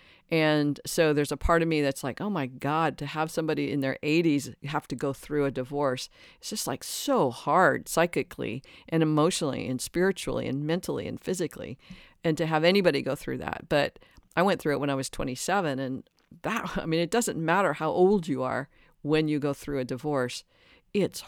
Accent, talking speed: American, 205 wpm